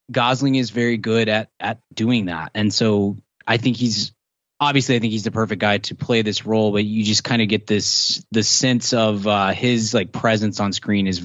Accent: American